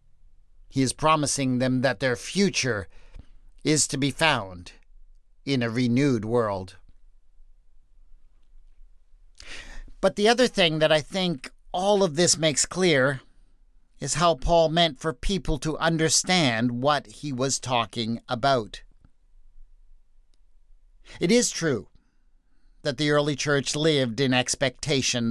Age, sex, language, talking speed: 50-69, male, English, 120 wpm